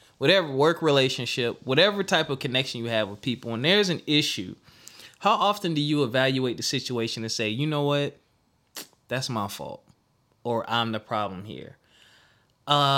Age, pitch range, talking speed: 20-39, 115-155 Hz, 165 wpm